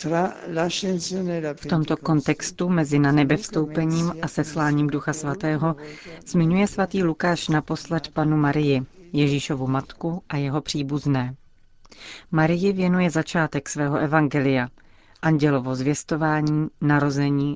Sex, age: female, 40-59